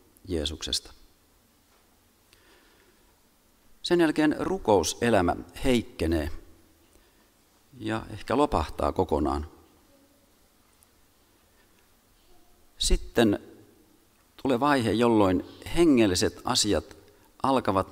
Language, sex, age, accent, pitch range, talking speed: Finnish, male, 40-59, native, 90-130 Hz, 55 wpm